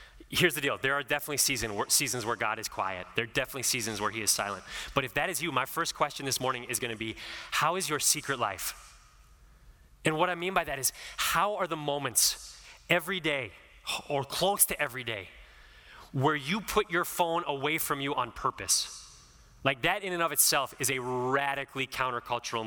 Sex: male